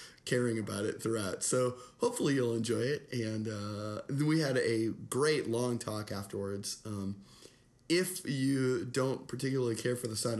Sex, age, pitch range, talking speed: male, 30-49, 110-135 Hz, 155 wpm